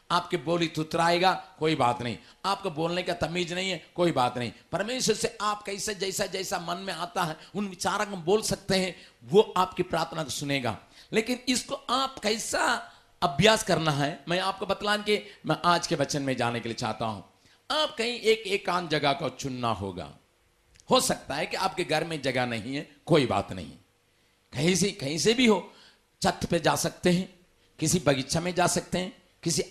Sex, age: male, 50-69